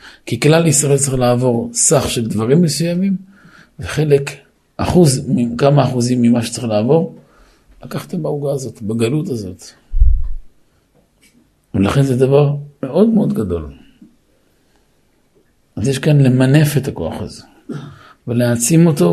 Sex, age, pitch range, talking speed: male, 50-69, 110-140 Hz, 115 wpm